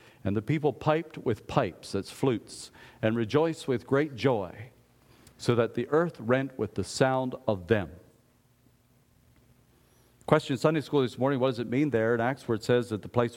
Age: 50-69